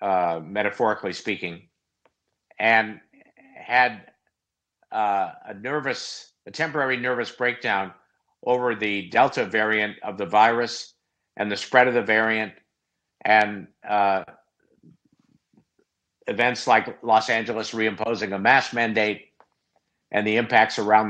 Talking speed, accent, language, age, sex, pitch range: 110 wpm, American, English, 50-69, male, 100-120 Hz